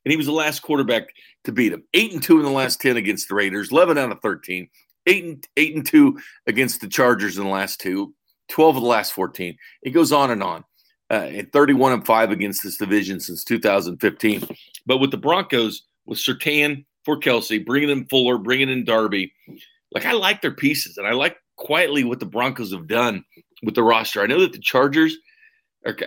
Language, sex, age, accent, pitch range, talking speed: English, male, 40-59, American, 115-150 Hz, 210 wpm